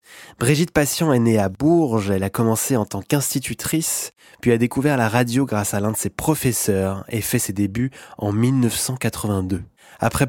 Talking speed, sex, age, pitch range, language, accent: 175 wpm, male, 20-39, 105-125 Hz, French, French